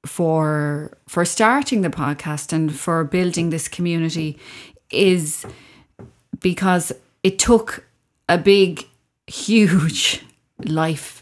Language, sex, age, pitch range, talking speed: English, female, 30-49, 160-195 Hz, 95 wpm